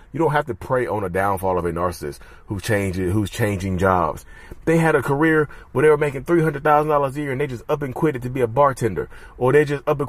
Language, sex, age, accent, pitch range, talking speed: English, male, 30-49, American, 105-150 Hz, 275 wpm